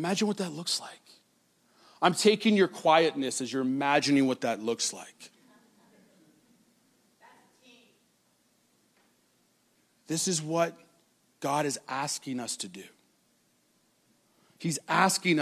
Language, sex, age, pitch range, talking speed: English, male, 40-59, 150-200 Hz, 105 wpm